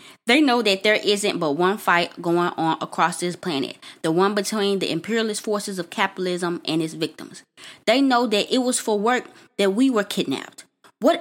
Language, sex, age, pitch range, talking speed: English, female, 20-39, 180-240 Hz, 195 wpm